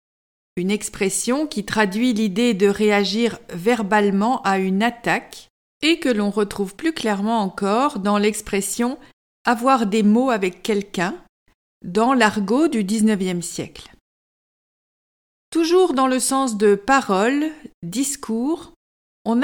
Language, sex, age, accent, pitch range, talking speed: French, female, 50-69, French, 210-270 Hz, 115 wpm